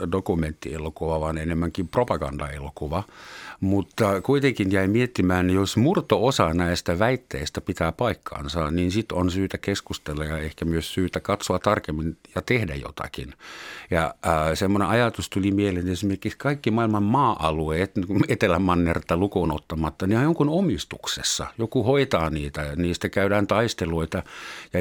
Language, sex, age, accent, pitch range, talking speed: Finnish, male, 50-69, native, 85-115 Hz, 130 wpm